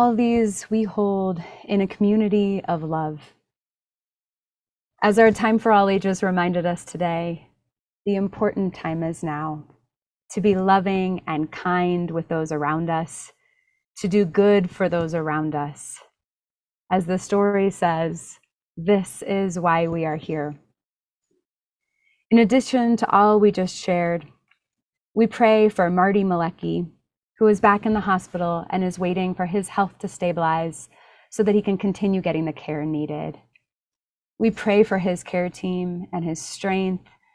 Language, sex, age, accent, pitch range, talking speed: English, female, 30-49, American, 165-205 Hz, 150 wpm